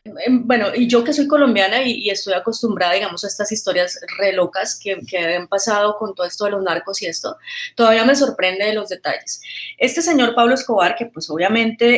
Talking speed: 205 wpm